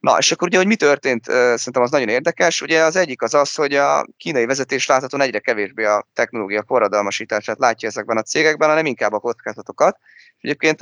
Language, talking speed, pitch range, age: Hungarian, 195 wpm, 105-155 Hz, 20-39